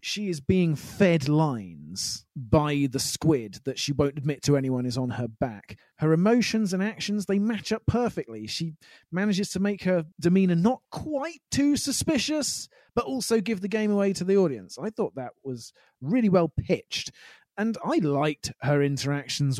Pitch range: 145-195 Hz